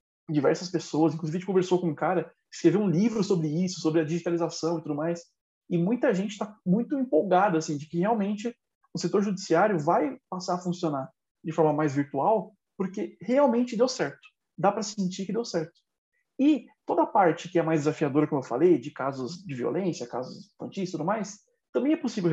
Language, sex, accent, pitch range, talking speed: Portuguese, male, Brazilian, 160-210 Hz, 195 wpm